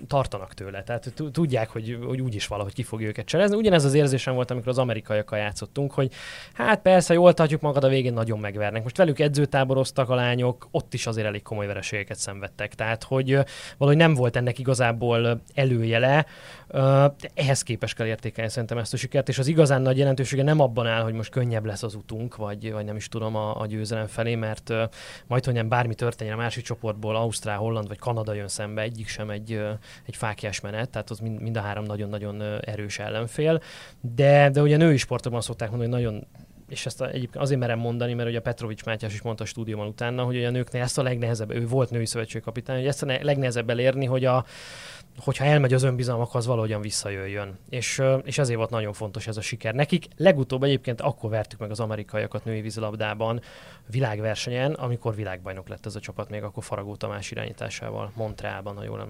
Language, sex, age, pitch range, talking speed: Hungarian, male, 20-39, 110-130 Hz, 200 wpm